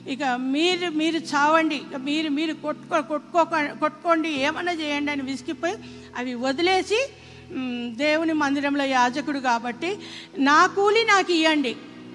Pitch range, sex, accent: 265-325 Hz, female, native